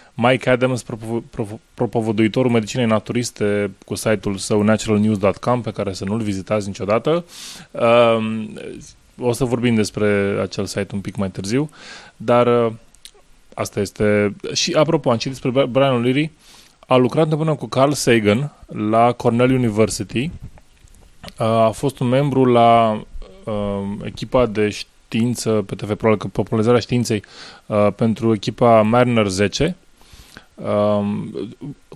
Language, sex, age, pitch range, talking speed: English, male, 20-39, 105-125 Hz, 130 wpm